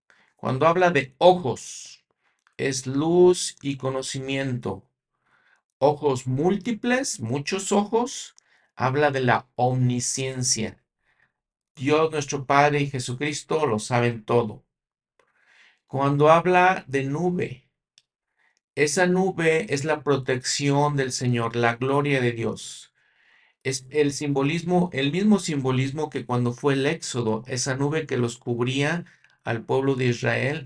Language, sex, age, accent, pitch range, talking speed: Spanish, male, 50-69, Mexican, 125-155 Hz, 115 wpm